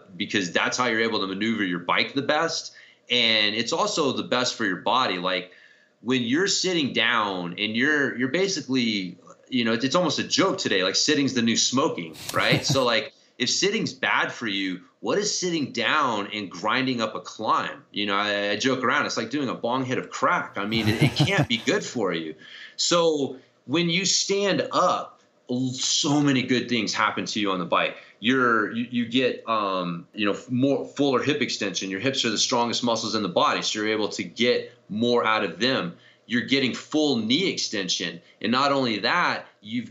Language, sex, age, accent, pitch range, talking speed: English, male, 30-49, American, 105-135 Hz, 205 wpm